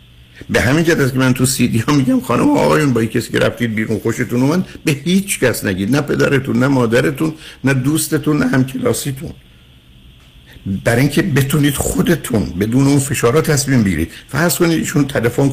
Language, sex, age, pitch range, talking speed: Persian, male, 60-79, 105-135 Hz, 165 wpm